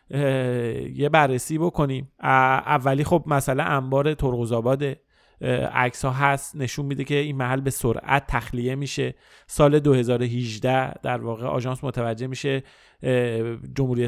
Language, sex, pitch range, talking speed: Persian, male, 125-145 Hz, 120 wpm